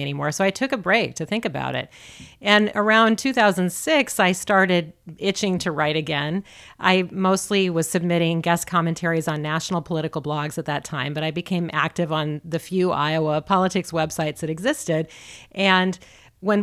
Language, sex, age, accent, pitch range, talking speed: English, female, 40-59, American, 160-195 Hz, 165 wpm